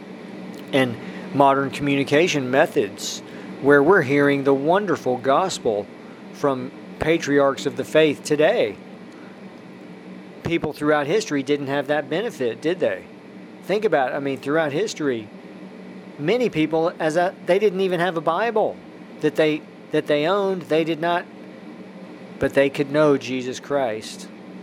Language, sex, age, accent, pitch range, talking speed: English, male, 40-59, American, 130-155 Hz, 135 wpm